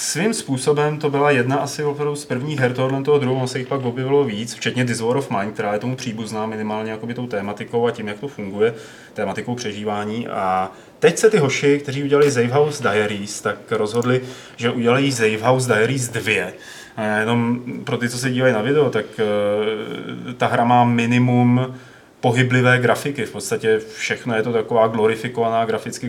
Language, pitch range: Czech, 110-140 Hz